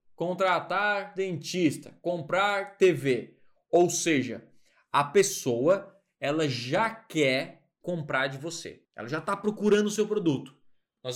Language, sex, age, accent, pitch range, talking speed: Portuguese, male, 20-39, Brazilian, 150-215 Hz, 120 wpm